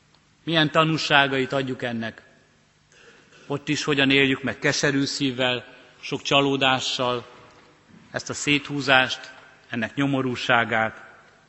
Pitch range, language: 120-145 Hz, Hungarian